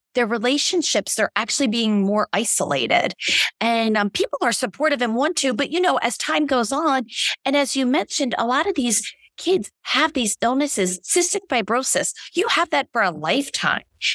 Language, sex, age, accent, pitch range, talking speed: English, female, 30-49, American, 195-260 Hz, 180 wpm